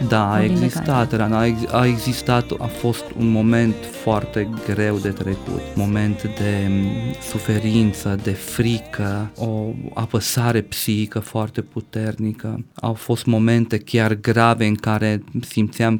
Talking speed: 115 wpm